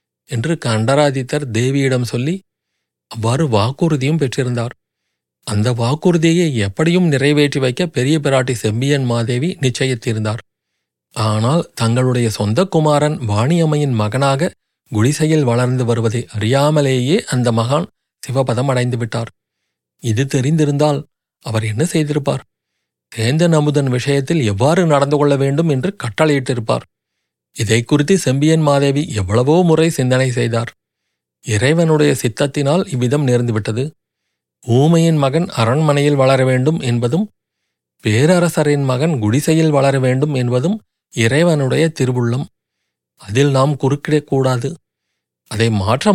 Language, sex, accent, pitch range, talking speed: Tamil, male, native, 115-150 Hz, 100 wpm